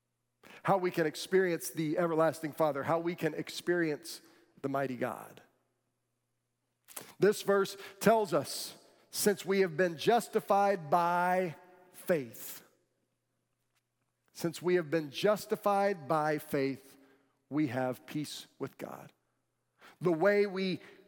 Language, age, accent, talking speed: English, 50-69, American, 115 wpm